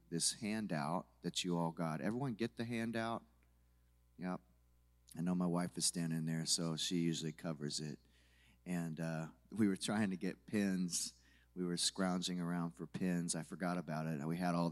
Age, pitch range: 30-49, 80-95 Hz